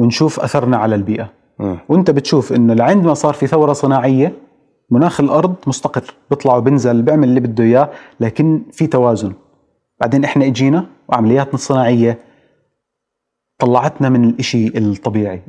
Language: Arabic